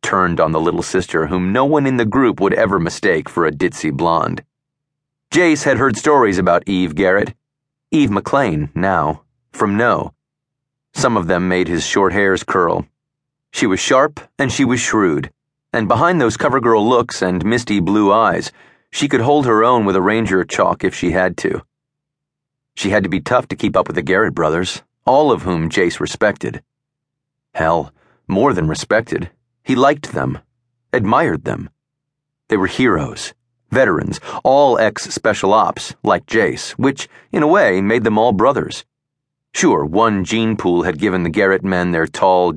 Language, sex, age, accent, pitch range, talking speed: English, male, 30-49, American, 95-140 Hz, 170 wpm